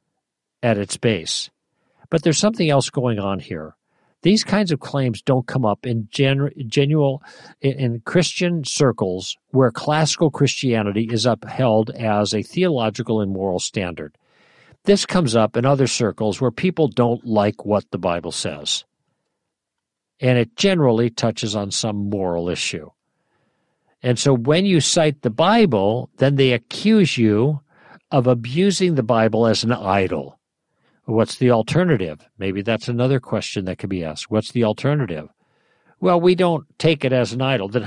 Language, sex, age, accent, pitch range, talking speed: English, male, 50-69, American, 110-150 Hz, 150 wpm